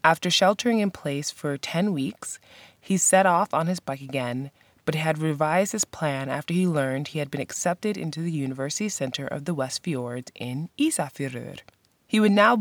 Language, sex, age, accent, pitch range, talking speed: English, female, 20-39, American, 140-195 Hz, 185 wpm